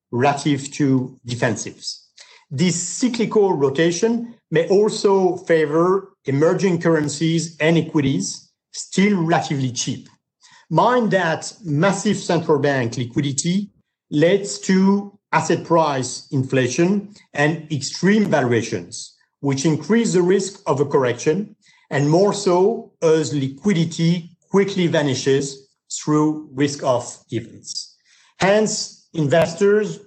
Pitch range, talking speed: 140-190 Hz, 100 wpm